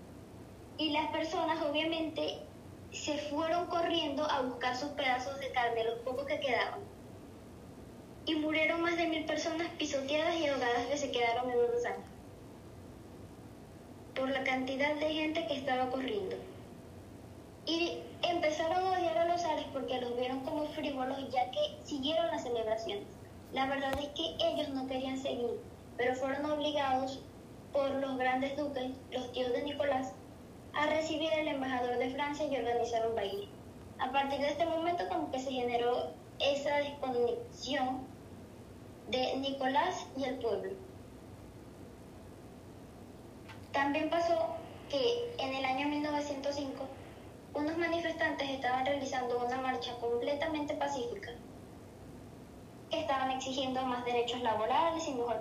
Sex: male